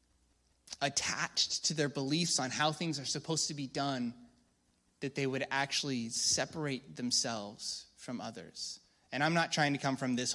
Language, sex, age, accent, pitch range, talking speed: English, male, 20-39, American, 125-165 Hz, 160 wpm